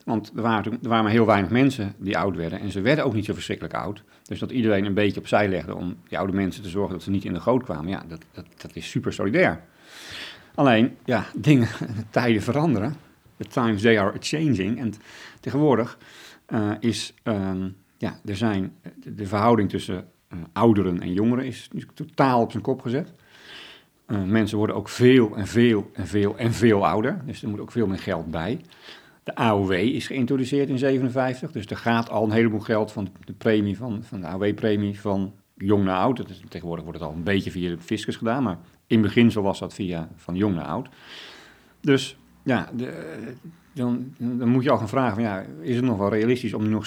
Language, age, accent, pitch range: Dutch, 40-59, Dutch, 95-120 Hz